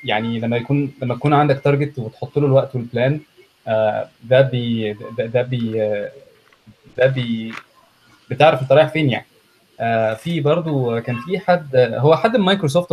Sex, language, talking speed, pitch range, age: male, Arabic, 140 wpm, 120-155 Hz, 20-39